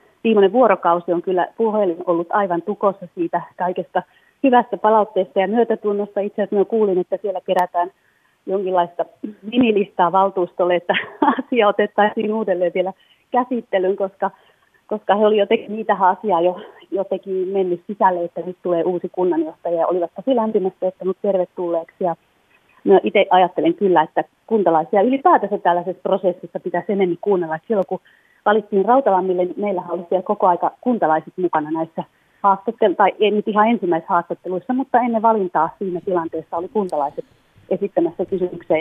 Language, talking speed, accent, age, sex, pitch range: Finnish, 140 wpm, native, 30-49, female, 175-210 Hz